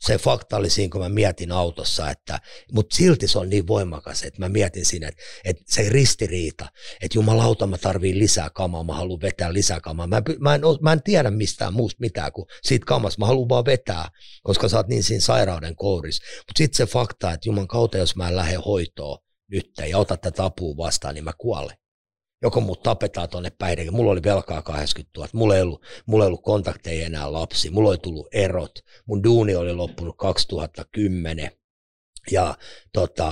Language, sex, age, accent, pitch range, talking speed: Finnish, male, 60-79, native, 85-105 Hz, 195 wpm